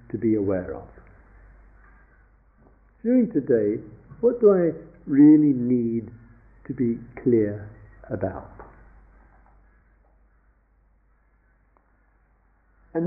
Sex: male